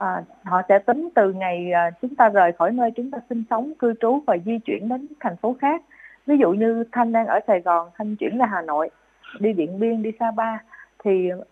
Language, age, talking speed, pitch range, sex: Vietnamese, 20-39, 225 wpm, 190-245 Hz, female